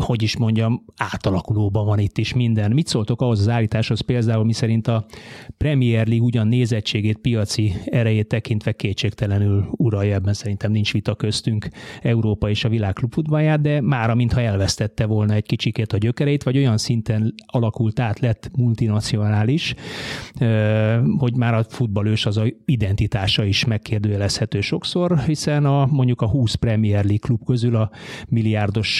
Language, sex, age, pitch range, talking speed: Hungarian, male, 30-49, 105-125 Hz, 150 wpm